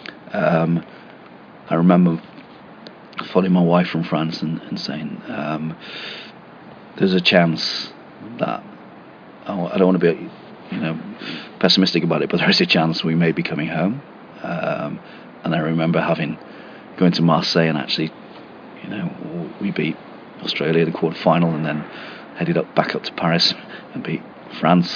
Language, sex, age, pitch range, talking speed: English, male, 40-59, 80-90 Hz, 160 wpm